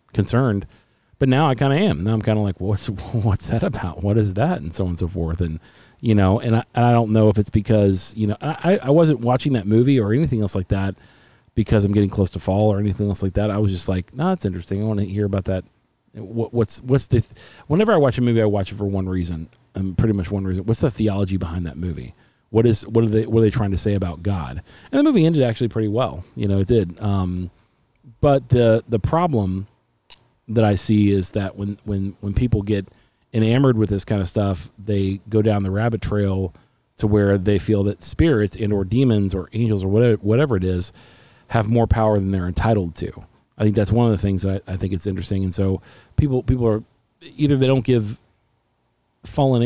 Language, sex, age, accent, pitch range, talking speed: English, male, 40-59, American, 95-115 Hz, 240 wpm